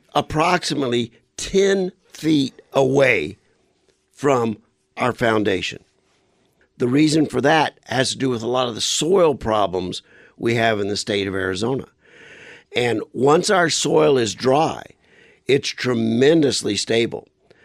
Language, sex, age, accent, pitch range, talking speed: English, male, 50-69, American, 105-140 Hz, 125 wpm